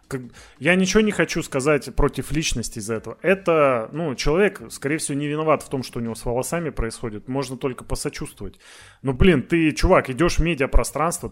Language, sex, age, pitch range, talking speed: Russian, male, 30-49, 125-170 Hz, 180 wpm